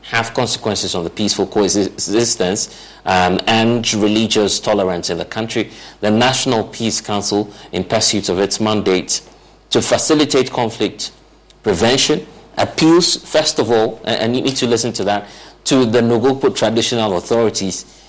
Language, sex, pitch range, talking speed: English, male, 95-120 Hz, 140 wpm